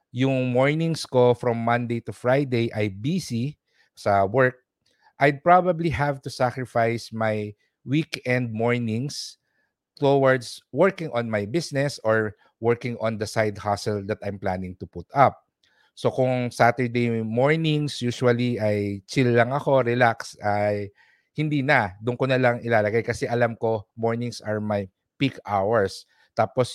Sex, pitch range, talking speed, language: male, 110-130 Hz, 140 wpm, English